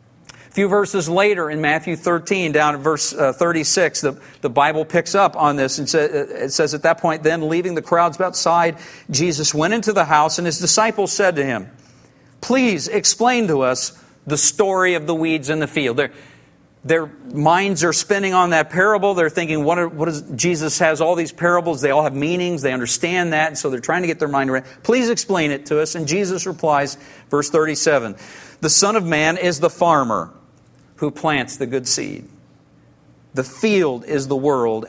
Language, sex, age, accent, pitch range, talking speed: English, male, 50-69, American, 135-175 Hz, 200 wpm